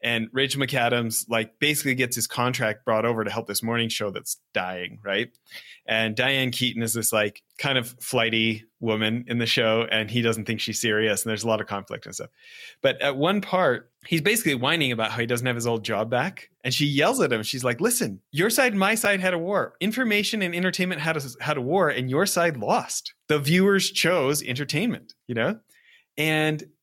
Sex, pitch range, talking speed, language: male, 125-195 Hz, 215 wpm, English